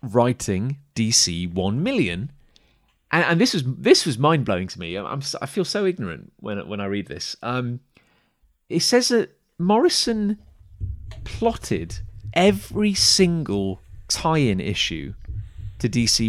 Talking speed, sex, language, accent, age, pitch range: 135 wpm, male, English, British, 30-49, 100-140 Hz